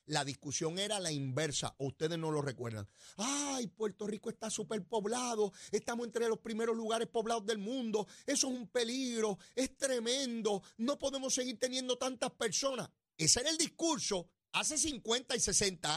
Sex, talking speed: male, 165 wpm